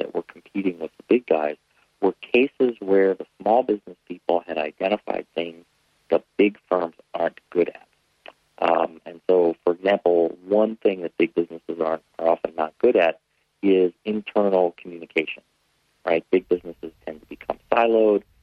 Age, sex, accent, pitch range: 50-69, male, American, 85-105 Hz